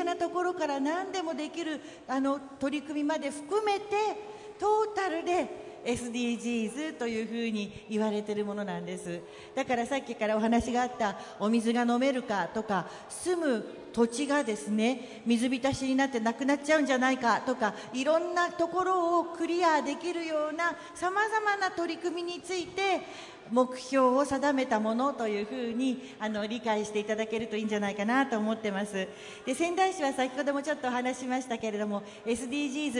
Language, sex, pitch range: Japanese, female, 220-300 Hz